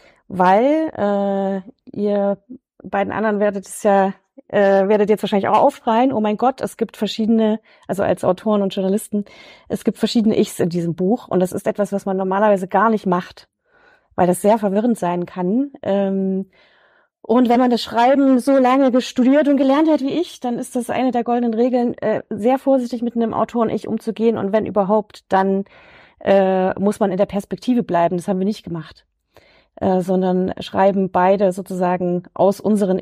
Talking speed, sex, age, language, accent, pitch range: 180 wpm, female, 30-49, German, German, 195-240 Hz